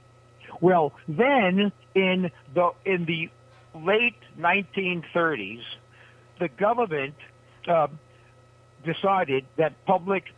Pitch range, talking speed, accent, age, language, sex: 130-175 Hz, 80 wpm, American, 60-79, English, male